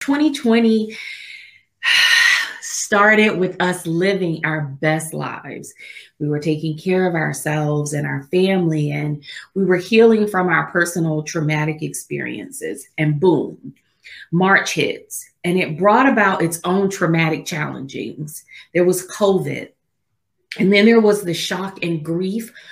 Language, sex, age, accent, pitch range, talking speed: English, female, 30-49, American, 160-205 Hz, 130 wpm